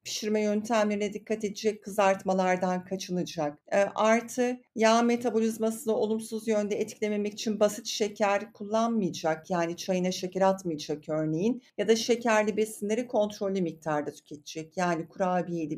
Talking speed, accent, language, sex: 120 wpm, native, Turkish, female